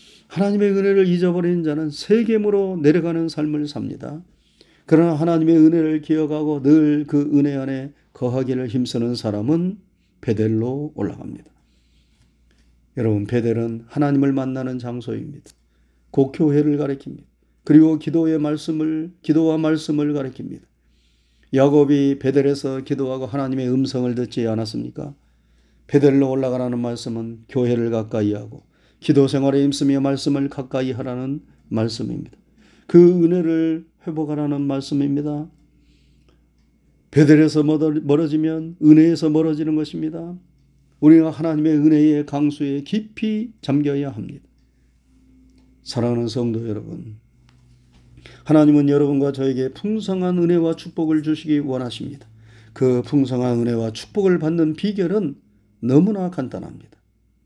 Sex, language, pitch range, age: male, Korean, 120-155 Hz, 40-59